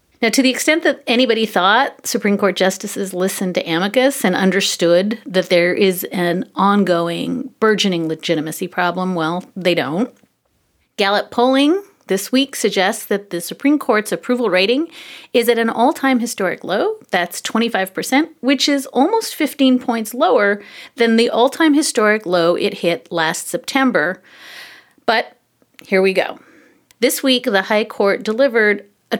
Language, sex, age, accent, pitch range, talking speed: English, female, 40-59, American, 185-255 Hz, 145 wpm